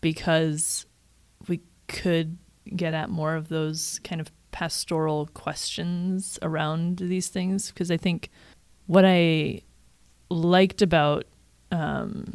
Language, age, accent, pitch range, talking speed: English, 20-39, American, 150-175 Hz, 110 wpm